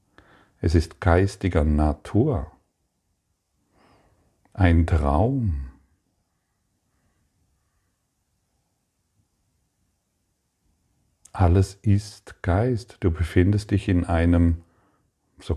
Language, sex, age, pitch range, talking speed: German, male, 50-69, 80-100 Hz, 60 wpm